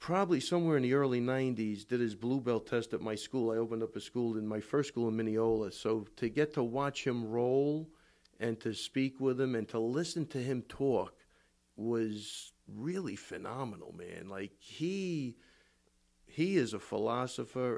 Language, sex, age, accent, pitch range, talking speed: English, male, 50-69, American, 110-145 Hz, 180 wpm